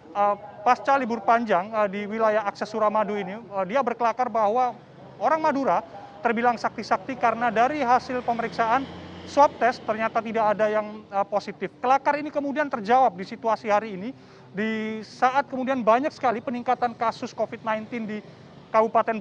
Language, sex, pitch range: Indonesian, male, 210-250 Hz